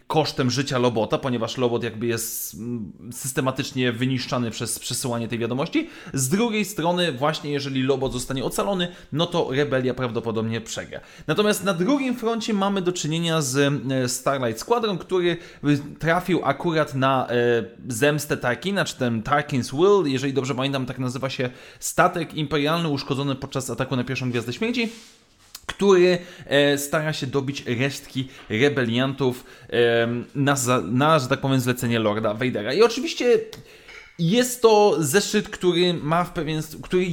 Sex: male